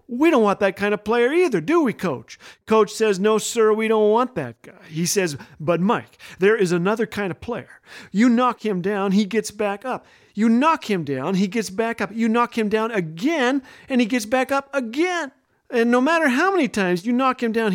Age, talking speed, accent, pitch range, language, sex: 40-59, 225 wpm, American, 160-225 Hz, English, male